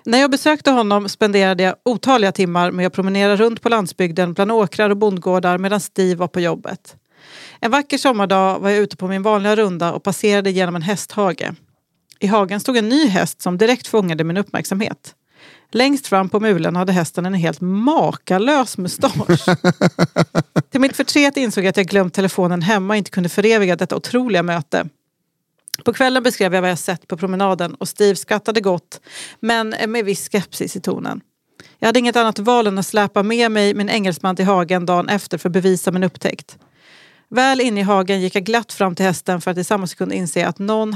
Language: English